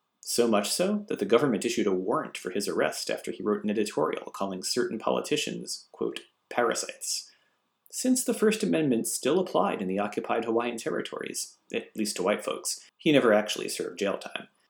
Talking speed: 180 wpm